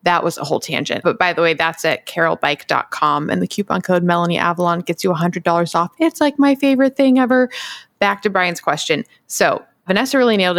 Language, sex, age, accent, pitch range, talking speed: English, female, 20-39, American, 160-195 Hz, 205 wpm